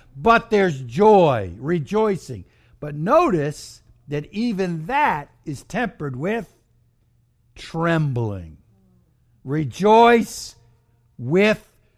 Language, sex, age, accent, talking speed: English, male, 60-79, American, 75 wpm